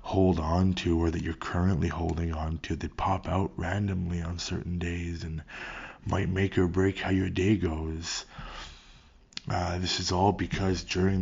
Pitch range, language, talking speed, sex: 85-95 Hz, English, 170 wpm, male